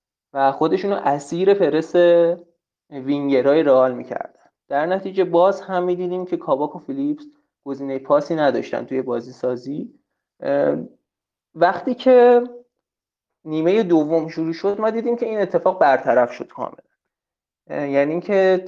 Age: 20-39